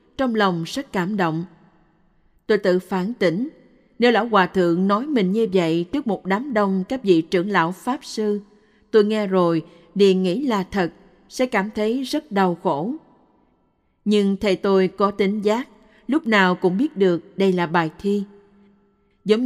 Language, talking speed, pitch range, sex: Vietnamese, 175 wpm, 175-210 Hz, female